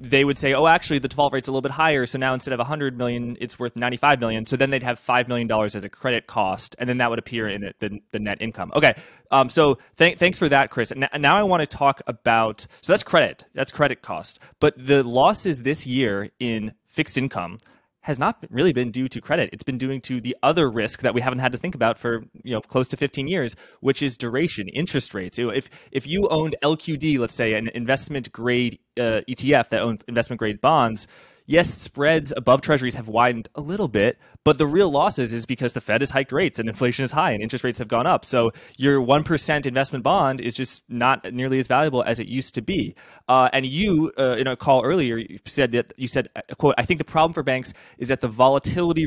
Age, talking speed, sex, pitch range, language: 20-39, 235 wpm, male, 120-145 Hz, English